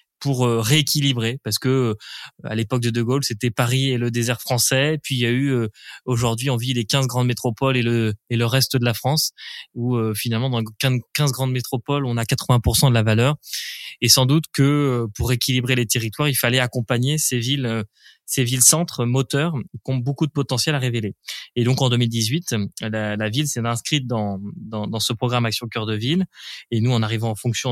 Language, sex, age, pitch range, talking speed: French, male, 20-39, 120-145 Hz, 205 wpm